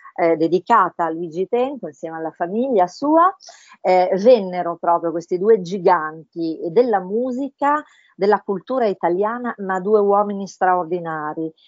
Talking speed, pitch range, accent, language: 125 wpm, 175-220 Hz, native, Italian